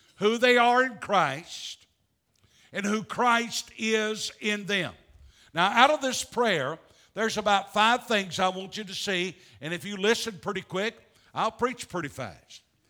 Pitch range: 180-230 Hz